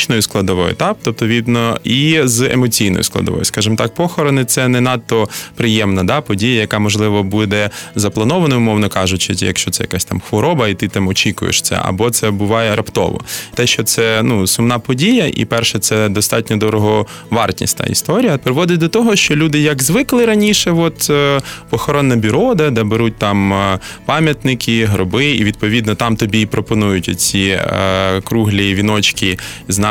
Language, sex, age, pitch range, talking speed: Ukrainian, male, 20-39, 105-140 Hz, 160 wpm